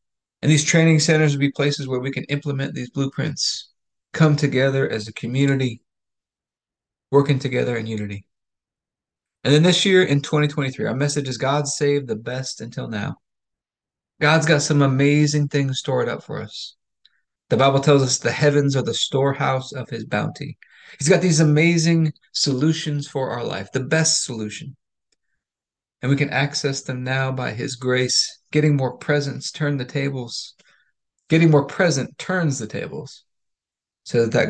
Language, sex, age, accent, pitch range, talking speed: English, male, 30-49, American, 125-150 Hz, 160 wpm